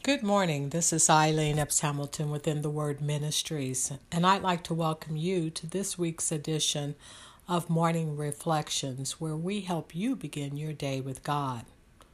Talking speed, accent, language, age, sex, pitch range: 160 wpm, American, English, 60-79, female, 140-175 Hz